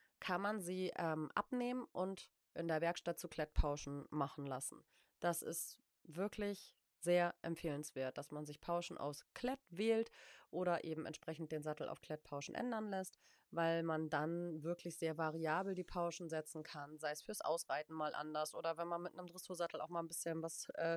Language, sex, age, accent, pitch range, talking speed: German, female, 30-49, German, 155-180 Hz, 175 wpm